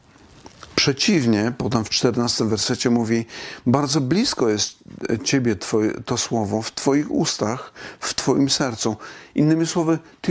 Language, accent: Polish, native